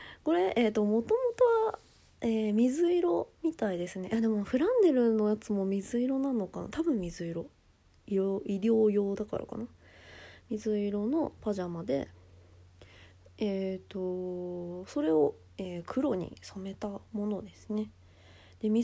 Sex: female